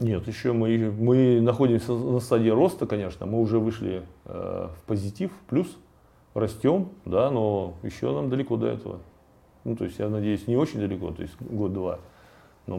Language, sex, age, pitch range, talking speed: Russian, male, 30-49, 105-130 Hz, 175 wpm